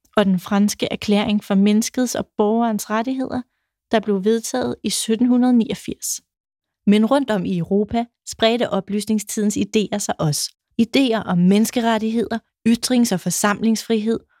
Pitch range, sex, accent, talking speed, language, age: 205-235 Hz, female, native, 125 wpm, Danish, 30-49